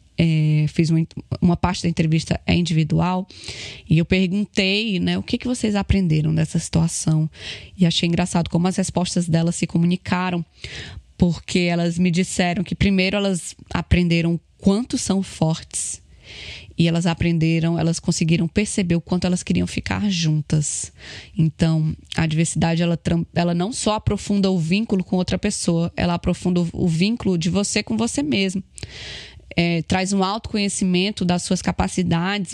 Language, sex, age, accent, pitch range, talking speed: Portuguese, female, 20-39, Brazilian, 170-195 Hz, 150 wpm